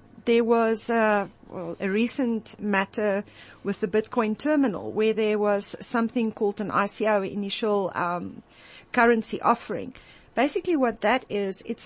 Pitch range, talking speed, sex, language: 205-250 Hz, 135 wpm, female, English